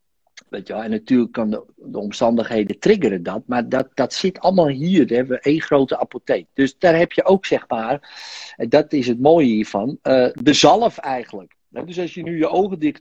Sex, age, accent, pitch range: male, 50-69, Dutch, 110-155 Hz